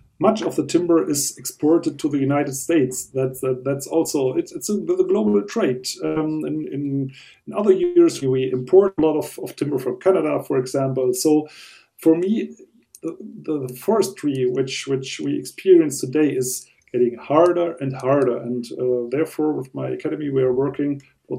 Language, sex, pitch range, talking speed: English, male, 130-160 Hz, 175 wpm